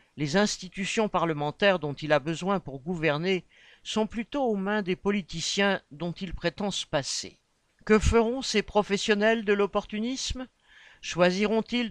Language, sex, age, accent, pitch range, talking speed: French, male, 50-69, French, 160-200 Hz, 135 wpm